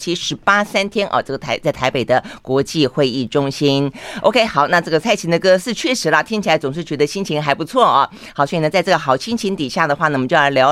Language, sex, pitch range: Chinese, female, 145-215 Hz